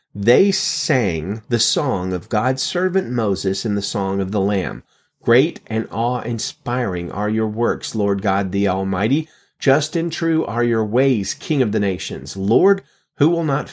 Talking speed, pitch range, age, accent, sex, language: 165 wpm, 95-125 Hz, 30-49, American, male, English